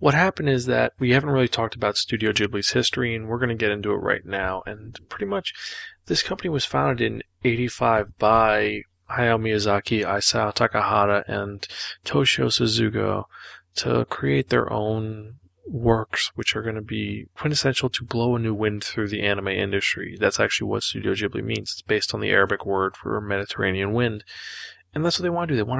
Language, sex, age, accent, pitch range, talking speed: English, male, 20-39, American, 100-115 Hz, 190 wpm